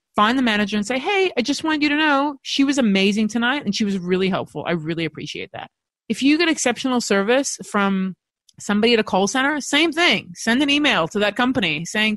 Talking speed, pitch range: 220 wpm, 190-260 Hz